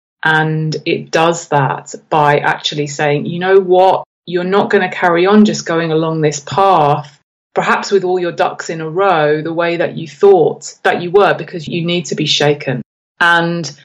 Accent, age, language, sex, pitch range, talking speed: British, 30-49, English, female, 155-185 Hz, 190 wpm